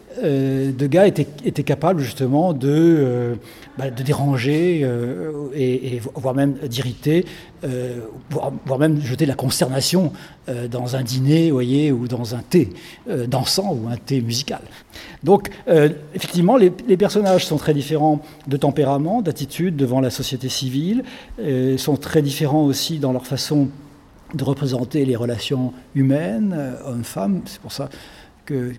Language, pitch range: French, 120-155 Hz